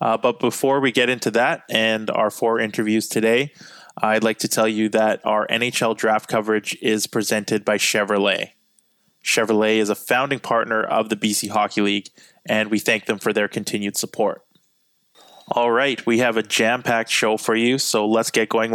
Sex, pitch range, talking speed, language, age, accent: male, 110-120 Hz, 180 wpm, English, 20-39, American